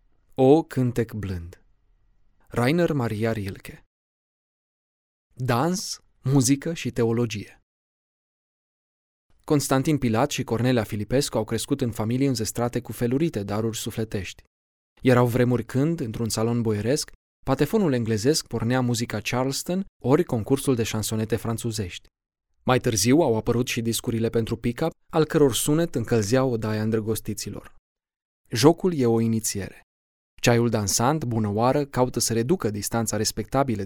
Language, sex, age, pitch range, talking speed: Romanian, male, 20-39, 110-135 Hz, 120 wpm